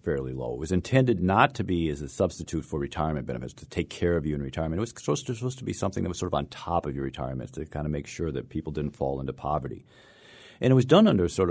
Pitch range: 75-95 Hz